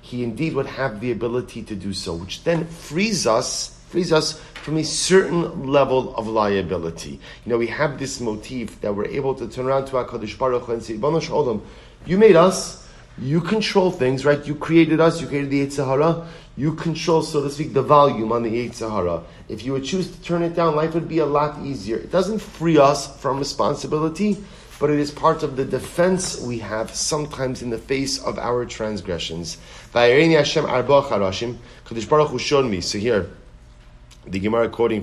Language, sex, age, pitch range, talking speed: English, male, 40-59, 115-155 Hz, 185 wpm